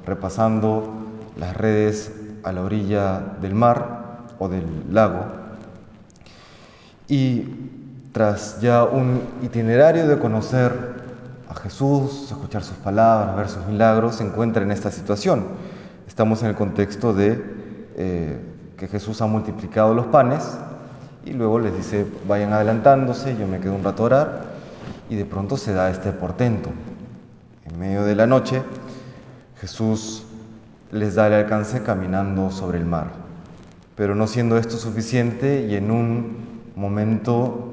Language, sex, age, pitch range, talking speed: Spanish, male, 30-49, 100-125 Hz, 135 wpm